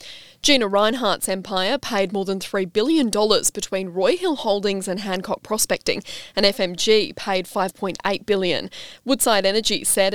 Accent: Australian